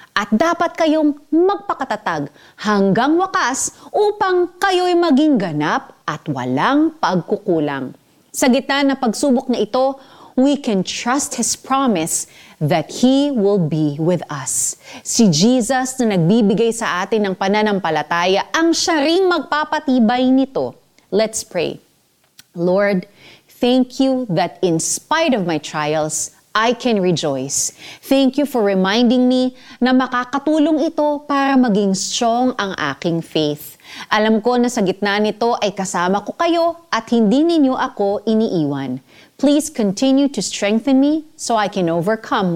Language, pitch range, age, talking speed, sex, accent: Filipino, 185-280 Hz, 30-49, 135 wpm, female, native